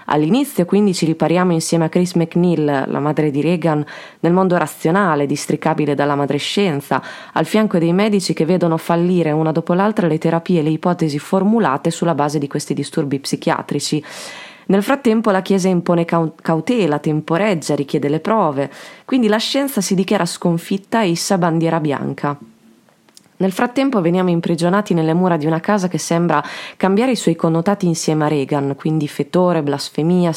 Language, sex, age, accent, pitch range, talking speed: Italian, female, 20-39, native, 155-195 Hz, 160 wpm